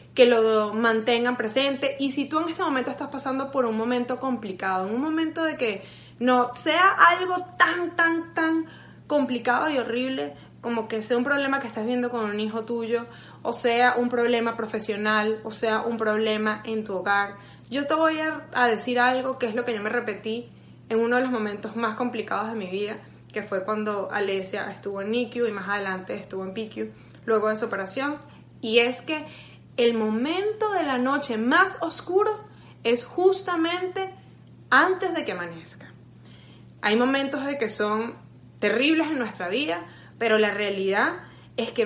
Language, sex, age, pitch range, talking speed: Spanish, female, 20-39, 215-285 Hz, 175 wpm